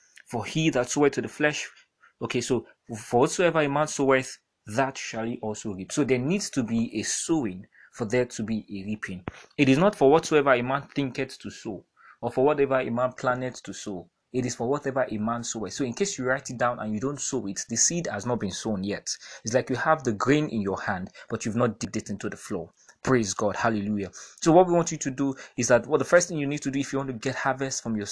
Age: 30-49